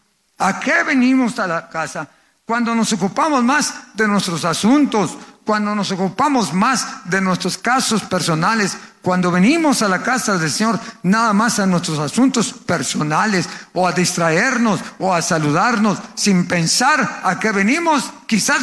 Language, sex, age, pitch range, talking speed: Spanish, male, 50-69, 185-240 Hz, 150 wpm